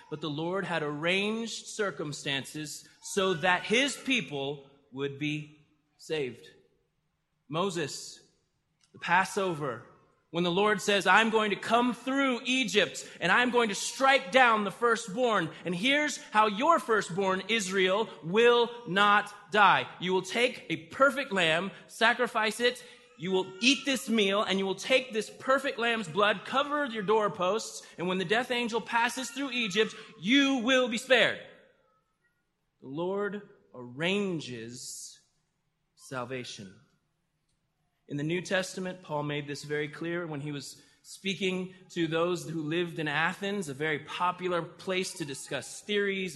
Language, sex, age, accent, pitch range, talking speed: English, male, 20-39, American, 160-230 Hz, 140 wpm